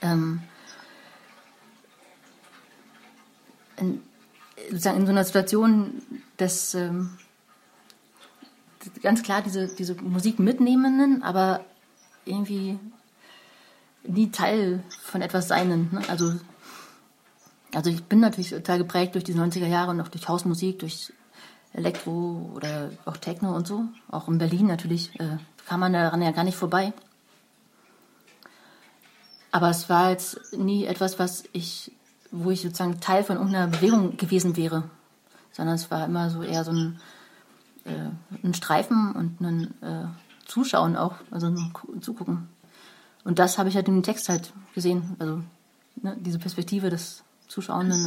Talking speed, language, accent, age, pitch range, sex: 135 wpm, German, German, 30-49, 170-200 Hz, female